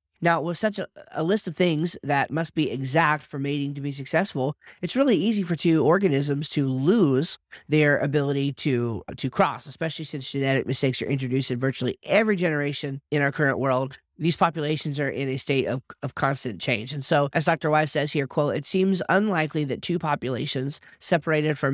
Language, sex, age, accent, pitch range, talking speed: English, male, 30-49, American, 130-155 Hz, 195 wpm